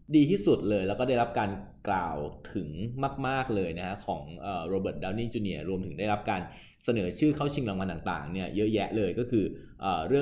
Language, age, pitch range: Thai, 20-39, 95-125 Hz